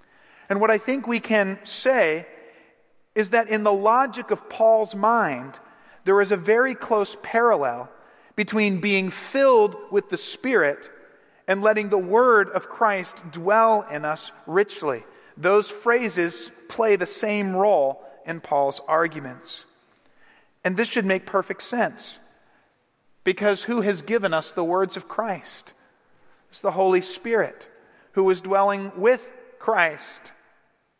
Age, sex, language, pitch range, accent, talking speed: 40-59, male, English, 190-230 Hz, American, 135 wpm